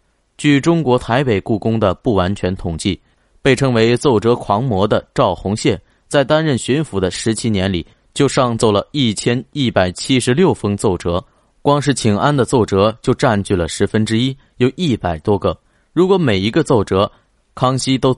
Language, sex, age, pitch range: Chinese, male, 20-39, 100-135 Hz